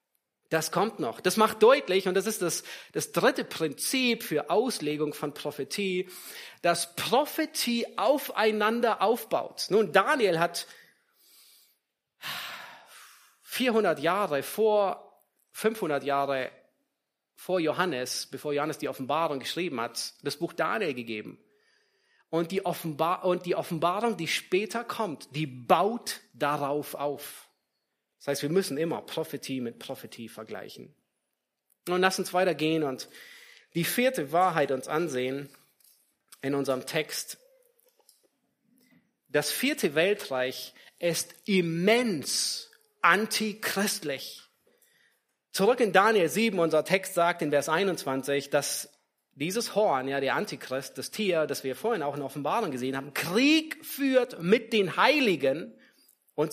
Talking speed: 120 wpm